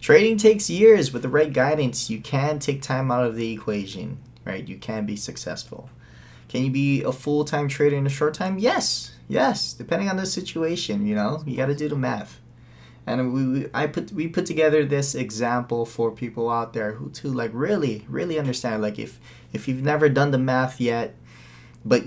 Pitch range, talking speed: 110-145 Hz, 200 wpm